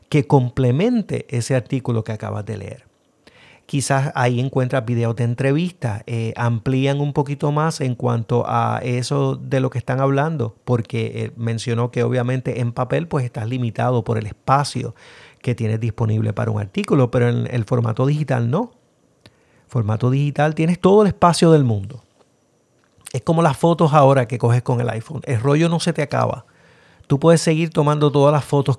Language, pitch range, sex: Spanish, 120-150 Hz, male